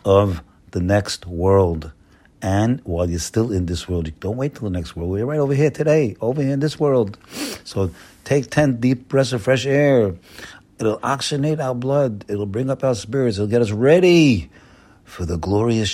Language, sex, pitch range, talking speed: English, male, 95-130 Hz, 195 wpm